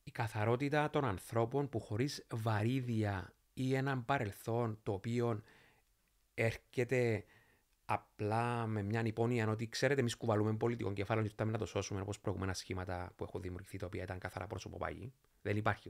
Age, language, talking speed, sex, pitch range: 30-49, Greek, 160 wpm, male, 100-125 Hz